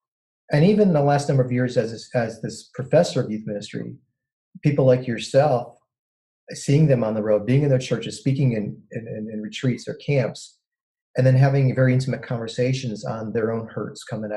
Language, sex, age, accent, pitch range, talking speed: English, male, 40-59, American, 120-155 Hz, 190 wpm